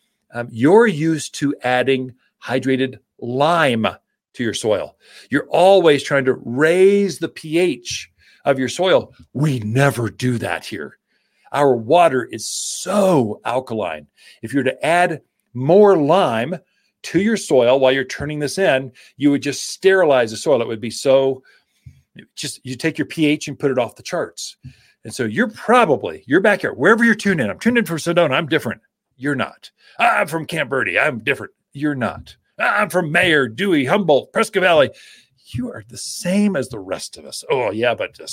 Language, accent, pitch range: English, American, 130-195 Hz